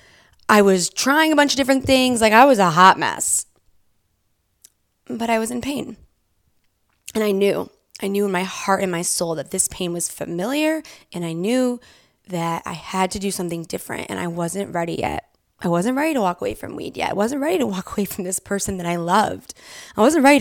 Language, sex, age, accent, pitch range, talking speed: English, female, 20-39, American, 170-240 Hz, 220 wpm